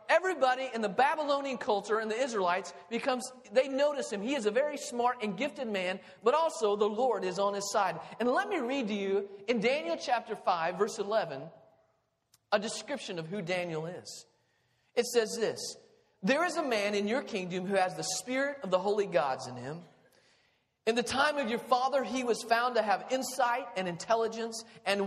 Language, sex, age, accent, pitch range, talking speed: English, male, 40-59, American, 185-260 Hz, 195 wpm